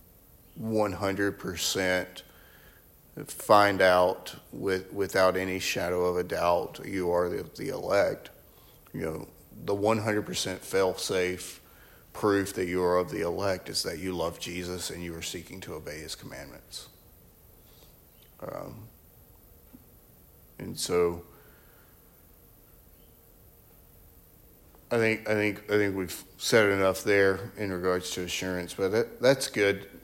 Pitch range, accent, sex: 90-115 Hz, American, male